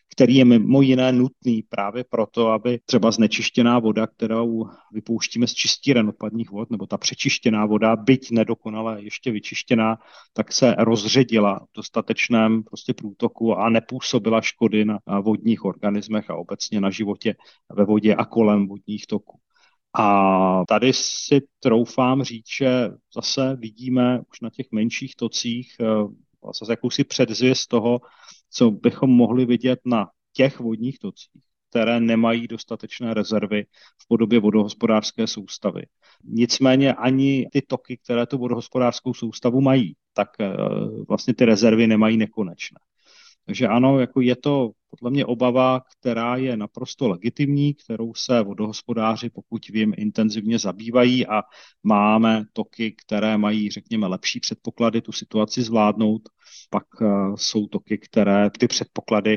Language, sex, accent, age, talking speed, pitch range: Czech, male, native, 40-59, 130 wpm, 105-120 Hz